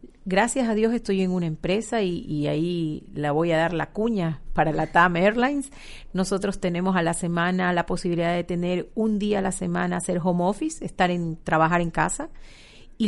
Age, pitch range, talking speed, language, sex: 40-59, 175-210 Hz, 195 wpm, Spanish, female